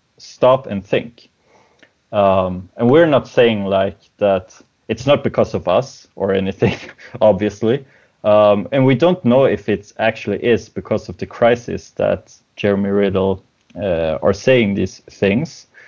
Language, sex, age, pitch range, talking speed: English, male, 30-49, 100-115 Hz, 145 wpm